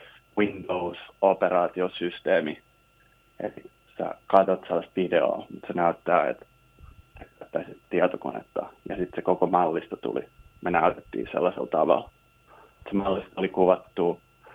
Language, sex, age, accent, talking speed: Finnish, male, 30-49, native, 105 wpm